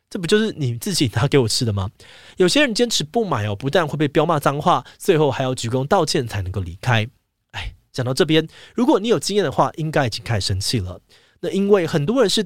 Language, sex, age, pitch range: Chinese, male, 20-39, 115-175 Hz